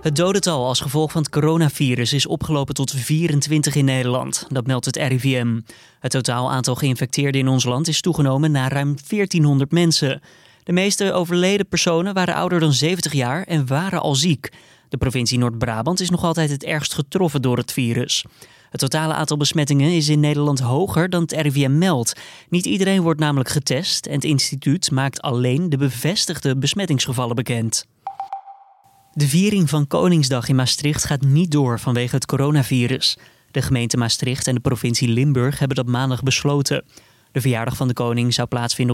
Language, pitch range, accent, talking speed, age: Dutch, 130-155 Hz, Dutch, 170 wpm, 20-39